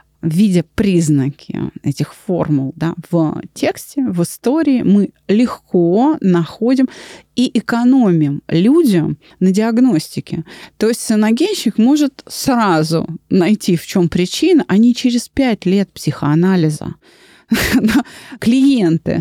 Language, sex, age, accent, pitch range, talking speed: Russian, female, 30-49, native, 170-235 Hz, 100 wpm